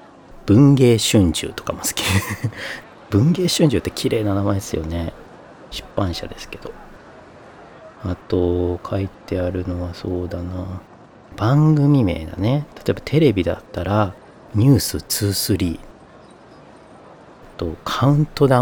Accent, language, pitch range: native, Japanese, 90-125 Hz